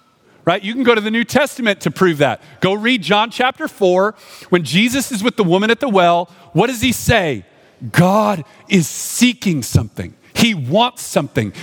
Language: English